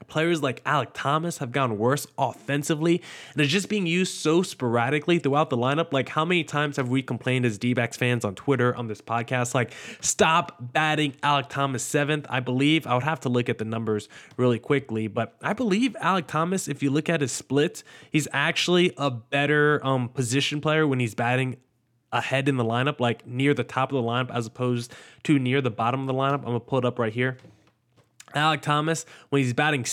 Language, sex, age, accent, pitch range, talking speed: English, male, 20-39, American, 125-155 Hz, 210 wpm